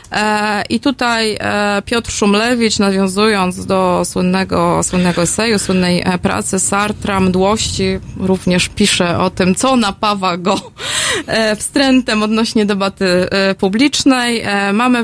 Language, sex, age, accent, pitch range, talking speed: Polish, female, 20-39, native, 190-220 Hz, 100 wpm